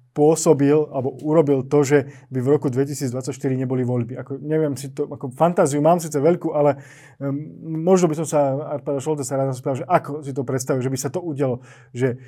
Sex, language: male, Slovak